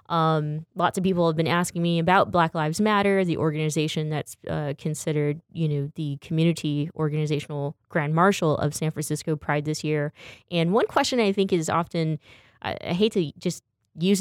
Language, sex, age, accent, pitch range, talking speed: English, female, 20-39, American, 150-180 Hz, 180 wpm